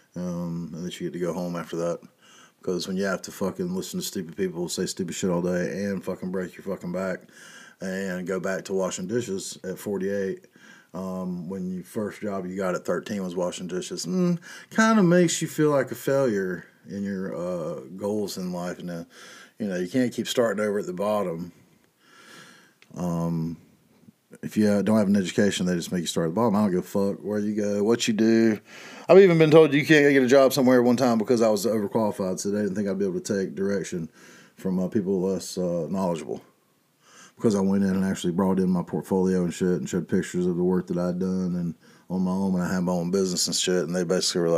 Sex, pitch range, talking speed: male, 90-145 Hz, 230 wpm